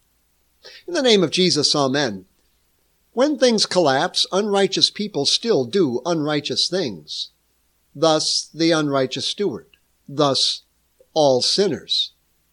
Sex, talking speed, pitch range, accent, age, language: male, 105 wpm, 135-190 Hz, American, 60-79, English